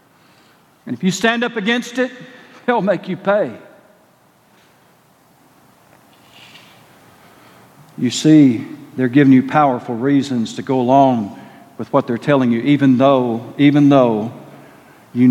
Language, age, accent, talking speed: English, 50-69, American, 120 wpm